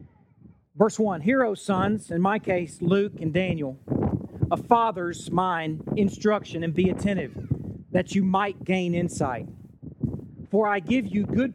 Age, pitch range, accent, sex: 40-59, 160-205 Hz, American, male